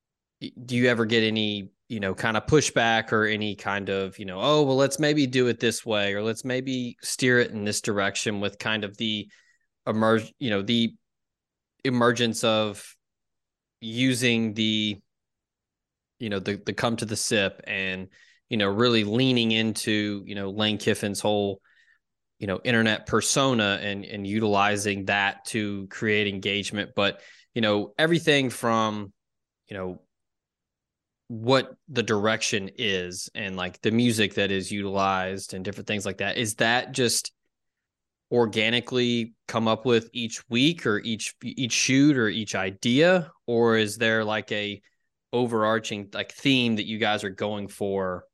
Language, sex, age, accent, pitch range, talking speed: English, male, 20-39, American, 100-115 Hz, 160 wpm